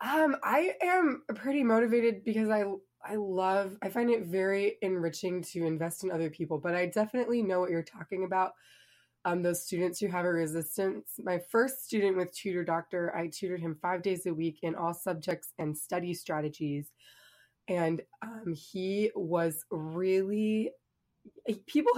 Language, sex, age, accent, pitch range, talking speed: English, female, 20-39, American, 165-205 Hz, 160 wpm